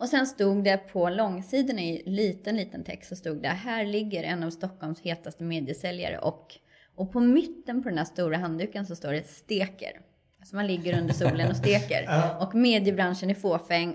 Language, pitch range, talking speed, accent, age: Swedish, 170-220 Hz, 190 wpm, native, 20-39